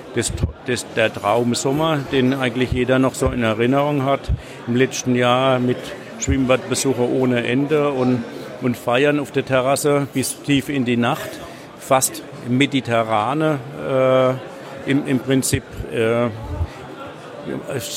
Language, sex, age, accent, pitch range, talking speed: German, male, 50-69, German, 125-150 Hz, 115 wpm